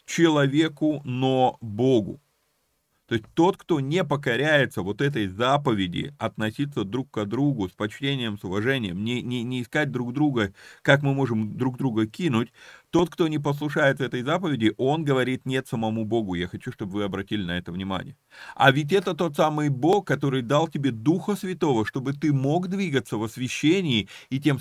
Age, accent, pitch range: 30-49, native, 115-155 Hz